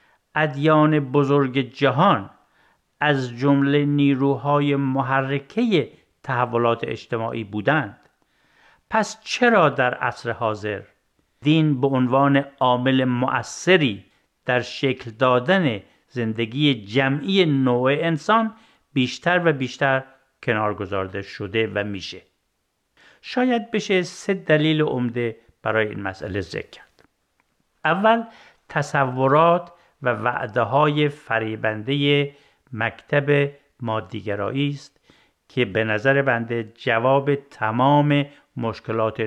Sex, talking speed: male, 95 wpm